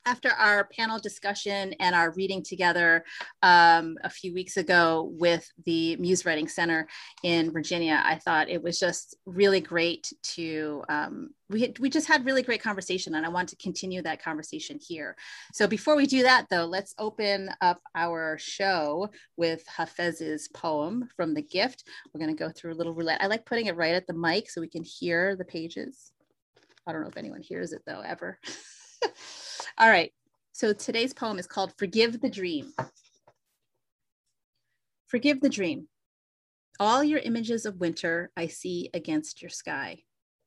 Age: 30-49